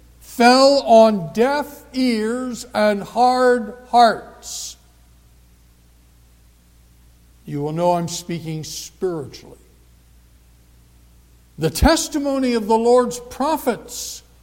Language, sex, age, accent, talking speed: English, male, 60-79, American, 80 wpm